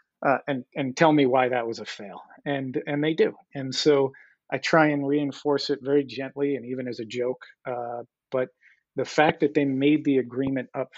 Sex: male